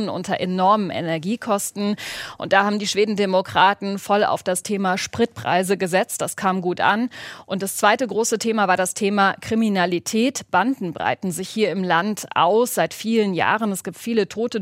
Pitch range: 180-215 Hz